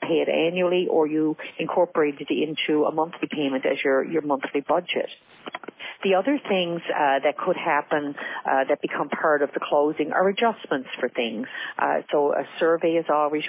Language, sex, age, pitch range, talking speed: English, female, 50-69, 140-175 Hz, 180 wpm